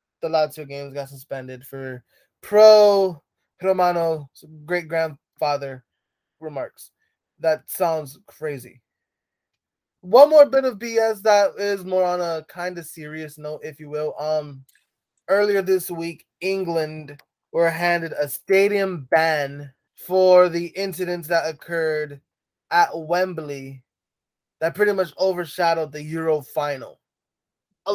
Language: English